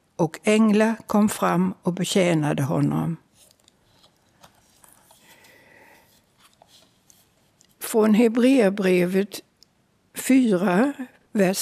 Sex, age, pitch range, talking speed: female, 60-79, 180-225 Hz, 55 wpm